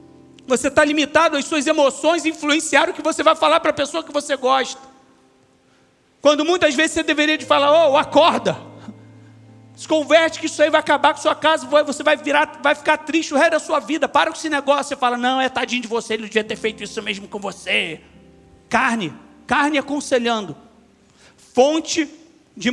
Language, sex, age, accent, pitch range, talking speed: English, male, 40-59, Brazilian, 255-315 Hz, 195 wpm